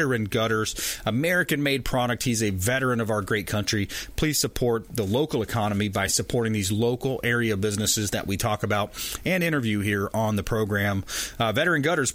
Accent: American